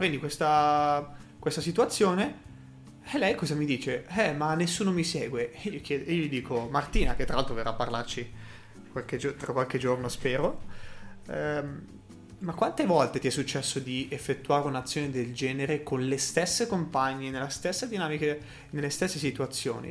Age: 20-39